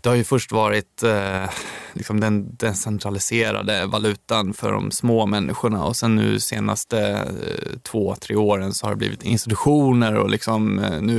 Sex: male